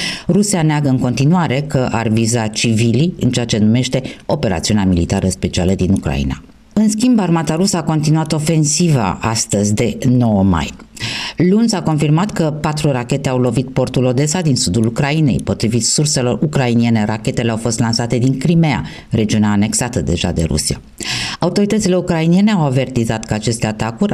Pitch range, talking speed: 110-155 Hz, 155 wpm